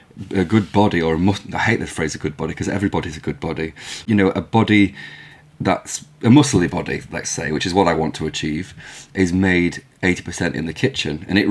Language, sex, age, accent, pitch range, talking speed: English, male, 30-49, British, 80-110 Hz, 215 wpm